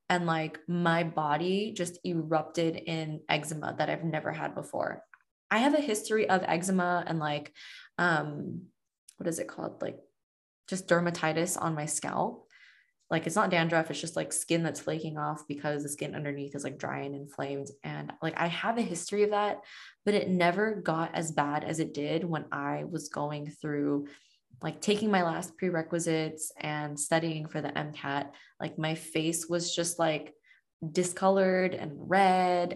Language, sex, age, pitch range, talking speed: English, female, 20-39, 155-180 Hz, 170 wpm